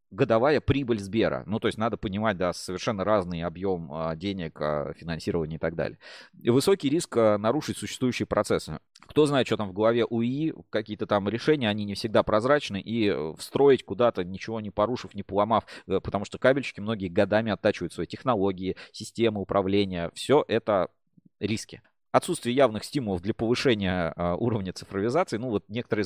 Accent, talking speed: native, 155 wpm